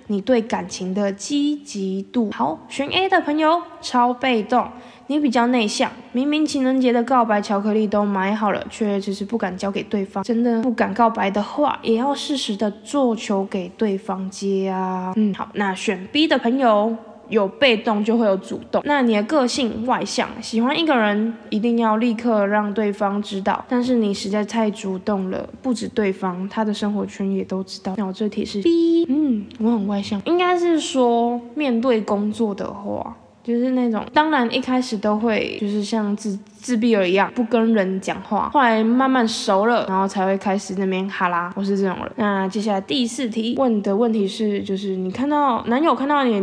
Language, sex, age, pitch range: Chinese, female, 10-29, 200-250 Hz